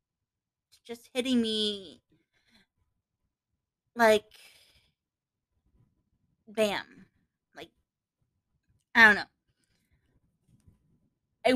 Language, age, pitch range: English, 20-39, 195-240 Hz